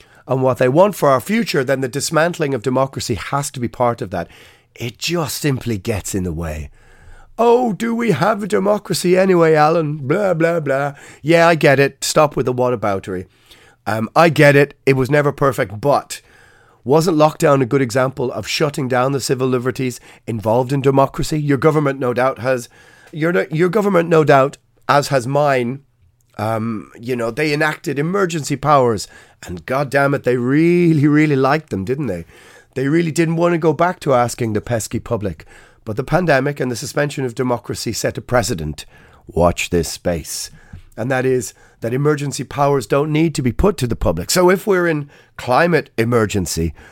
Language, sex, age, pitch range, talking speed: English, male, 30-49, 120-155 Hz, 180 wpm